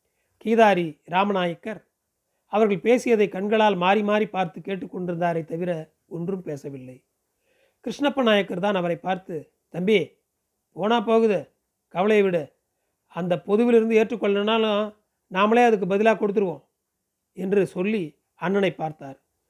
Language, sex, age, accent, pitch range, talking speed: Tamil, male, 40-59, native, 175-215 Hz, 100 wpm